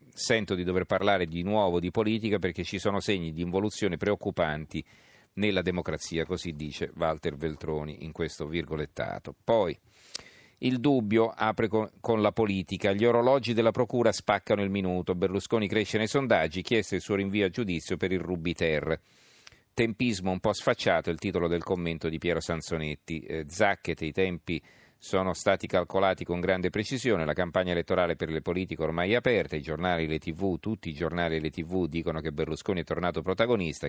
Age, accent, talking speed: 40-59, native, 175 wpm